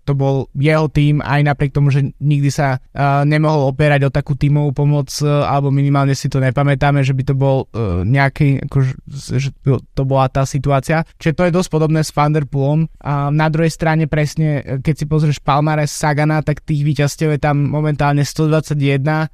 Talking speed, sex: 190 wpm, male